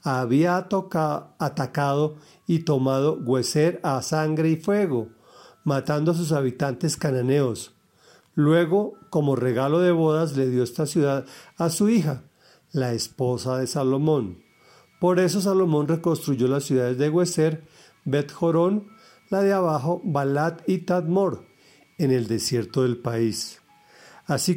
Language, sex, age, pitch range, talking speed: Spanish, male, 40-59, 130-170 Hz, 130 wpm